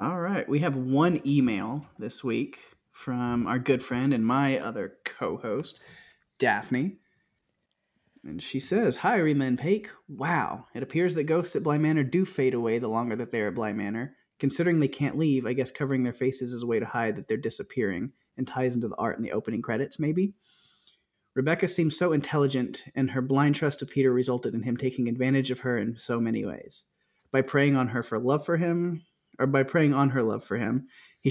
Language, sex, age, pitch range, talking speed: English, male, 20-39, 120-145 Hz, 205 wpm